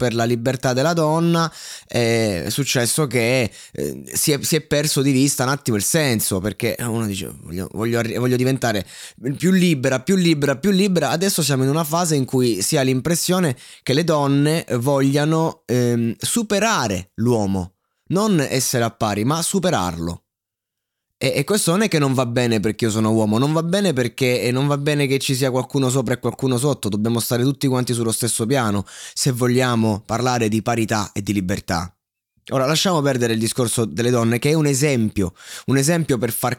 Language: Italian